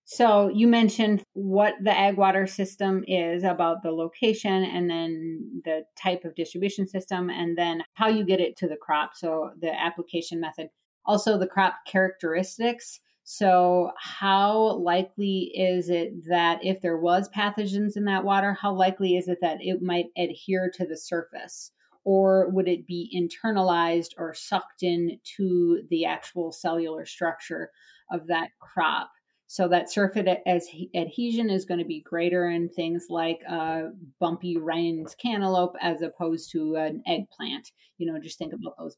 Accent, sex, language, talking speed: American, female, English, 160 wpm